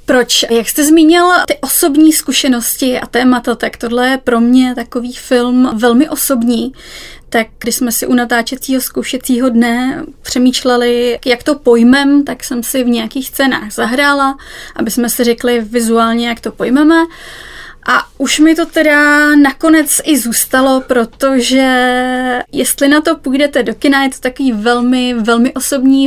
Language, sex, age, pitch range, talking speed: Czech, female, 20-39, 235-270 Hz, 150 wpm